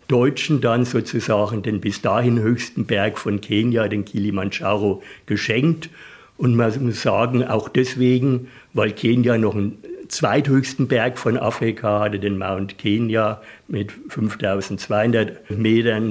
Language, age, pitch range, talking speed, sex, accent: German, 60-79, 110-145 Hz, 125 wpm, male, German